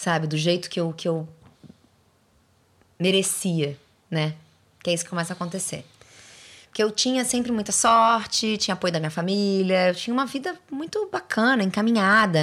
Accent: Brazilian